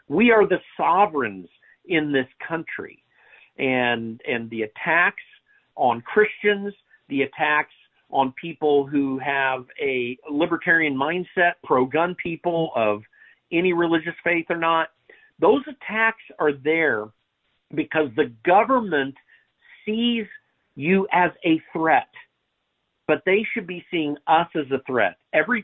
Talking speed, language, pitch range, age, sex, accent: 120 wpm, English, 125-180 Hz, 50-69, male, American